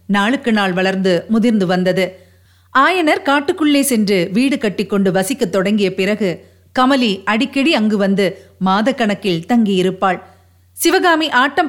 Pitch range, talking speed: 195-270 Hz, 105 wpm